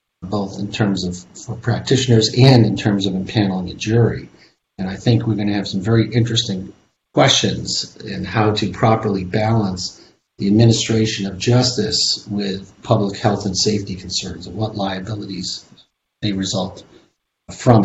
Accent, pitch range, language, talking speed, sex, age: American, 100-115 Hz, English, 150 wpm, male, 40-59